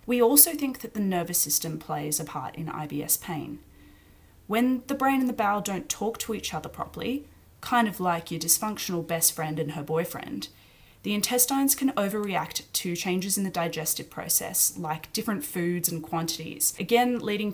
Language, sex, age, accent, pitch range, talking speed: English, female, 20-39, Australian, 155-220 Hz, 180 wpm